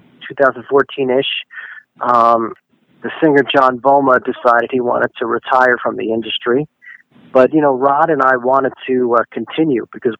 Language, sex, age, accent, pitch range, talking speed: English, male, 40-59, American, 120-140 Hz, 145 wpm